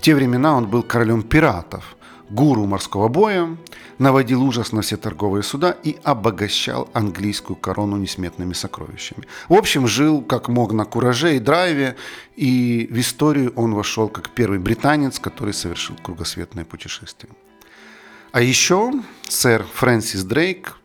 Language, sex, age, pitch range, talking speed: Russian, male, 40-59, 105-140 Hz, 140 wpm